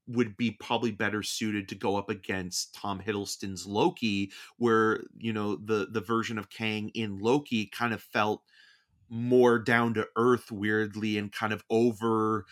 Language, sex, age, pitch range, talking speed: English, male, 30-49, 100-115 Hz, 165 wpm